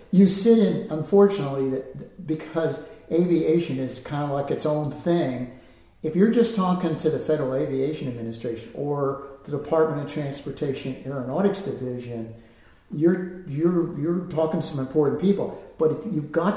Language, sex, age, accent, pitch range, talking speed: English, male, 50-69, American, 135-170 Hz, 150 wpm